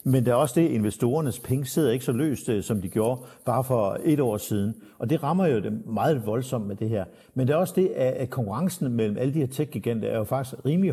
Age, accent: 60-79, native